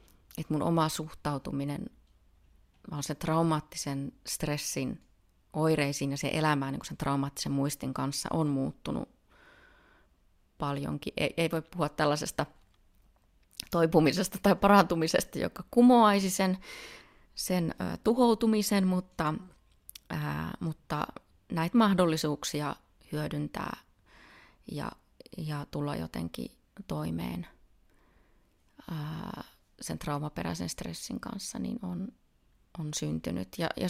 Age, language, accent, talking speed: 30-49, Finnish, native, 95 wpm